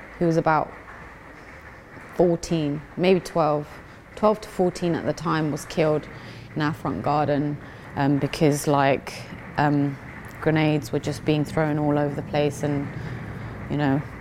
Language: English